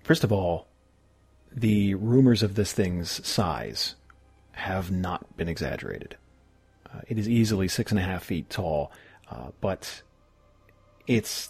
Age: 40-59